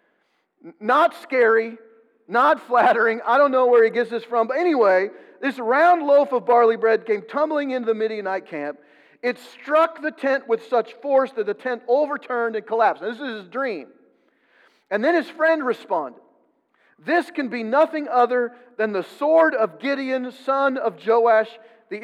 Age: 40-59